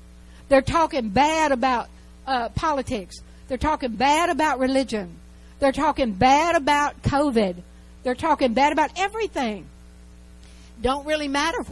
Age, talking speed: 60-79, 130 wpm